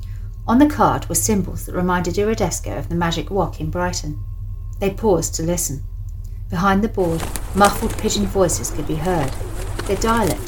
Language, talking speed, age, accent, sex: English, 165 wpm, 40-59, British, female